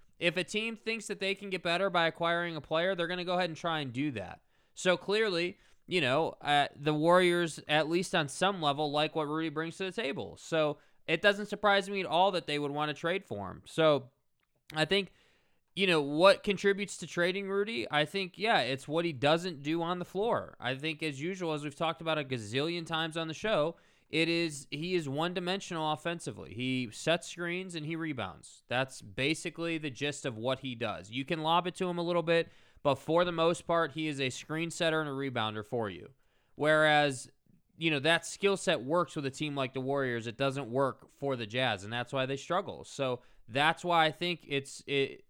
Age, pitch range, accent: 20-39, 135-175 Hz, American